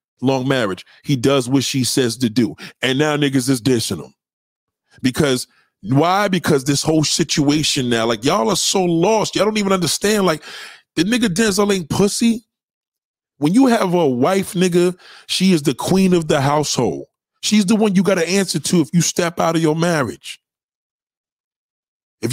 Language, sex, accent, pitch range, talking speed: English, male, American, 155-225 Hz, 175 wpm